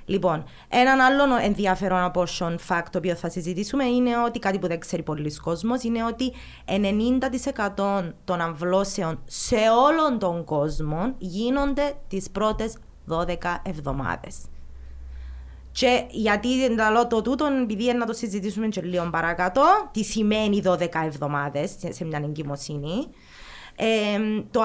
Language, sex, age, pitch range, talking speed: Greek, female, 20-39, 170-230 Hz, 125 wpm